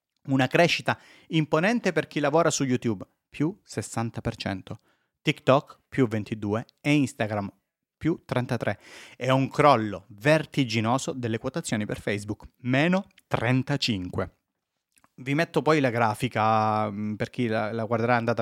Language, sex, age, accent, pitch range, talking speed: Italian, male, 30-49, native, 115-155 Hz, 125 wpm